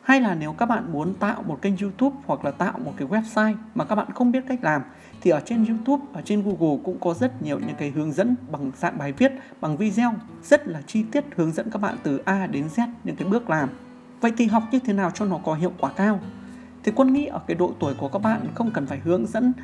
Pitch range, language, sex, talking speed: 175-235 Hz, Vietnamese, male, 265 wpm